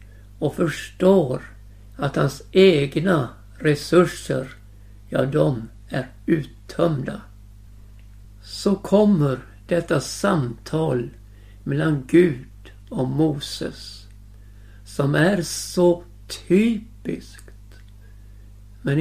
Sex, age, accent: male, 60-79, native